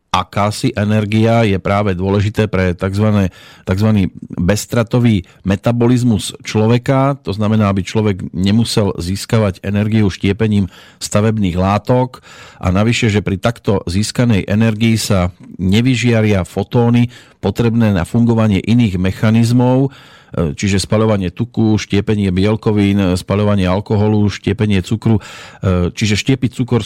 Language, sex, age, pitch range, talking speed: Slovak, male, 40-59, 95-115 Hz, 105 wpm